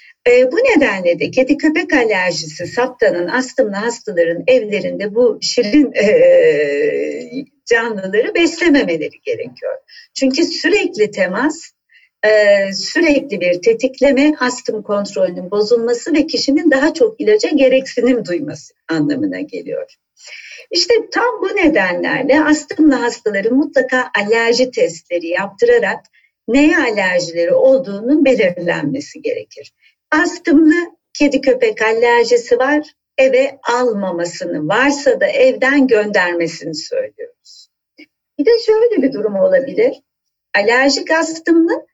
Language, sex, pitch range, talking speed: Turkish, female, 240-385 Hz, 95 wpm